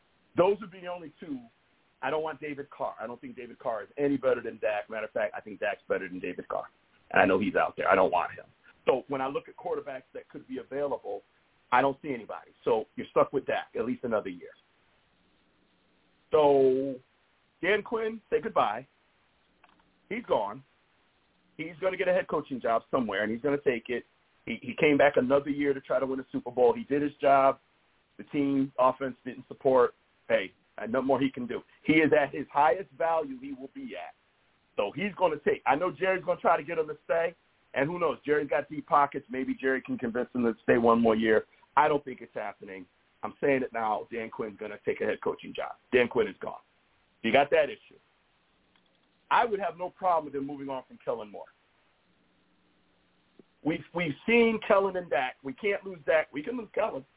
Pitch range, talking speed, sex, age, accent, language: 130-180 Hz, 220 wpm, male, 40-59, American, English